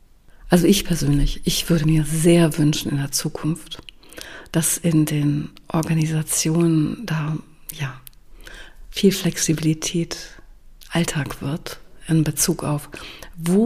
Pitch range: 155-195 Hz